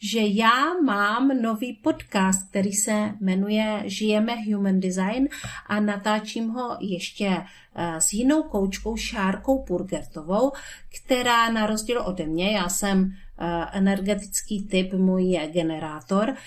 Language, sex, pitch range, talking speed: Czech, female, 180-225 Hz, 115 wpm